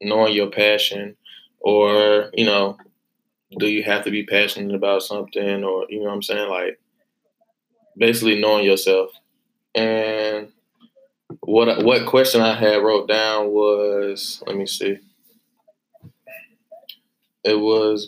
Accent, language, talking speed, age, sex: American, English, 125 wpm, 20-39, male